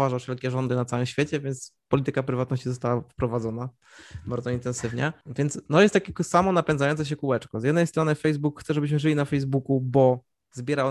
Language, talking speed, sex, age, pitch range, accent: Polish, 170 wpm, male, 20-39, 130-150 Hz, native